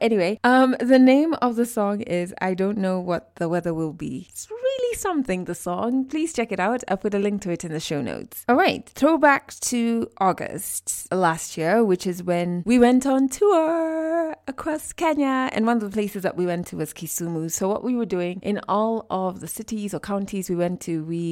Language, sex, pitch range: English, female, 165-225 Hz